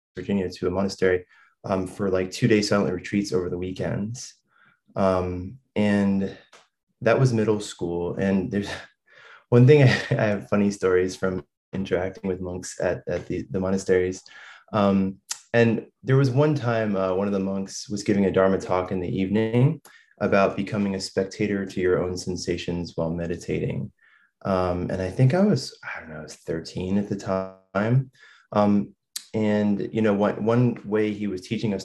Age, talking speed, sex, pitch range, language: 20-39, 170 wpm, male, 90-105 Hz, English